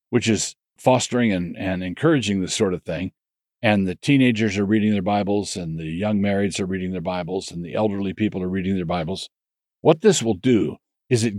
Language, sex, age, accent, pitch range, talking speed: English, male, 50-69, American, 95-120 Hz, 205 wpm